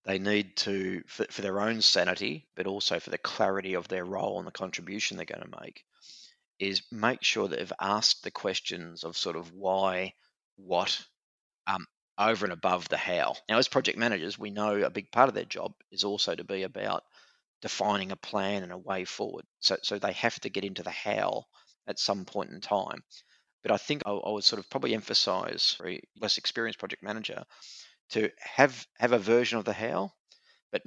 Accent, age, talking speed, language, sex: Australian, 30-49, 200 wpm, English, male